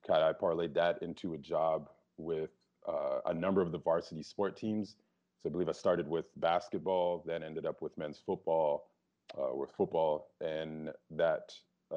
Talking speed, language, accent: 165 wpm, English, American